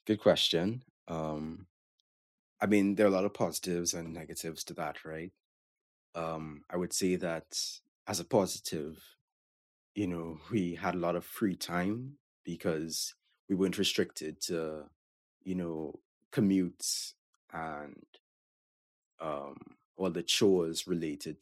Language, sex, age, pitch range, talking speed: English, male, 30-49, 80-100 Hz, 130 wpm